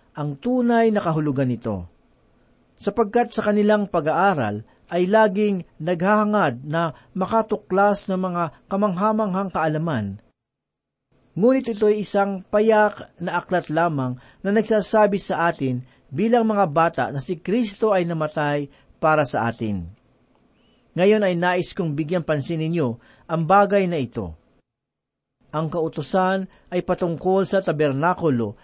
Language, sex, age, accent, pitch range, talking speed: Filipino, male, 50-69, native, 155-205 Hz, 120 wpm